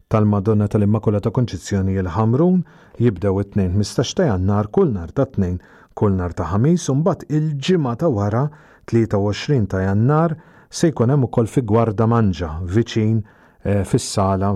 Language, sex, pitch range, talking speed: English, male, 95-130 Hz, 135 wpm